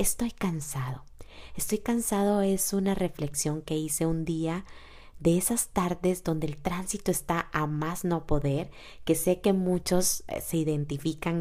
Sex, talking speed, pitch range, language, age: female, 145 wpm, 155-180 Hz, Spanish, 20-39